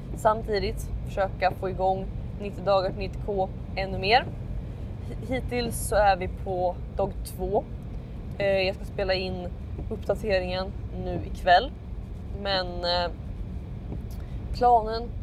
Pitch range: 175-225 Hz